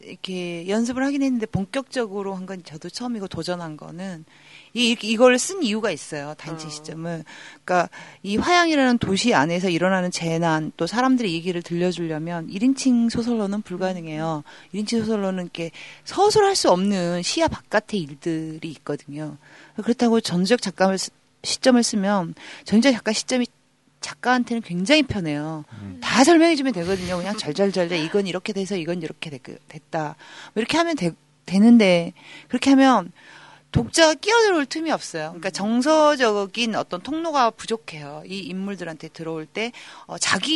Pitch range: 170-245 Hz